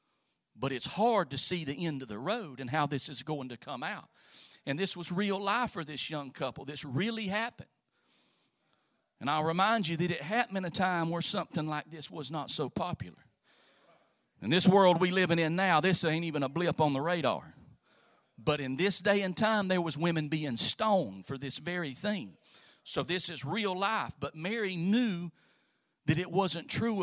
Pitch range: 155-200 Hz